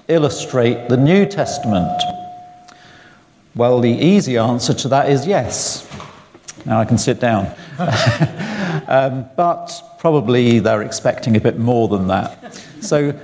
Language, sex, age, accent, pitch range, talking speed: English, male, 50-69, British, 115-155 Hz, 125 wpm